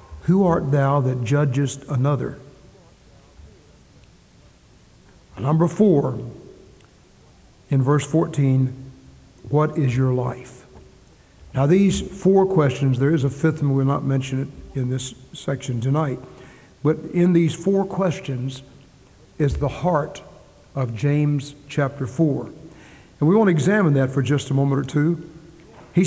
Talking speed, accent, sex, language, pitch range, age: 130 wpm, American, male, English, 135-160 Hz, 60-79